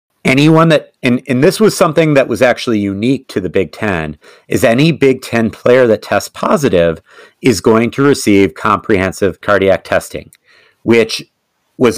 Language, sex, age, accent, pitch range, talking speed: English, male, 40-59, American, 95-125 Hz, 160 wpm